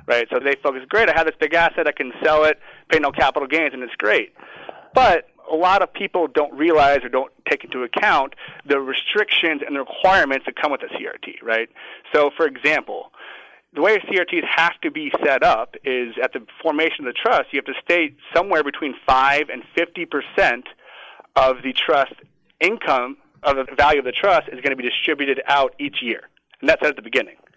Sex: male